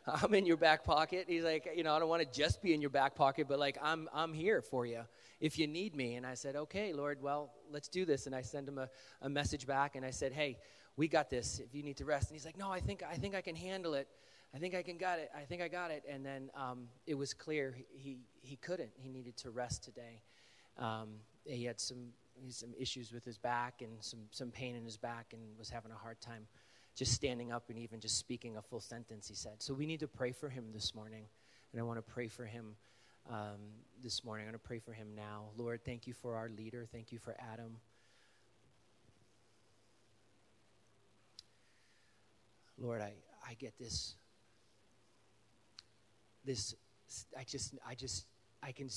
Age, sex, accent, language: 30-49, male, American, English